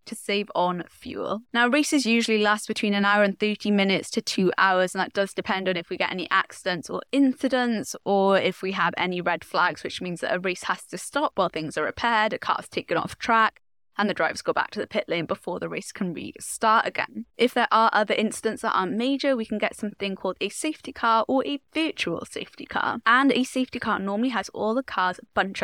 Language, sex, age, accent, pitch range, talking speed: English, female, 10-29, British, 190-240 Hz, 230 wpm